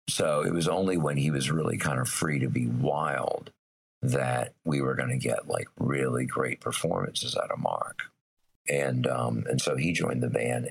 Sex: male